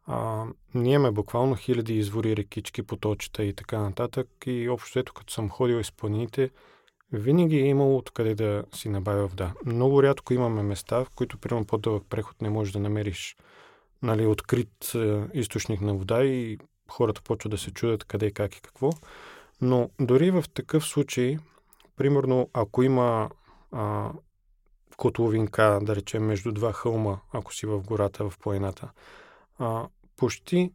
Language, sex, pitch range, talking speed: Bulgarian, male, 105-130 Hz, 150 wpm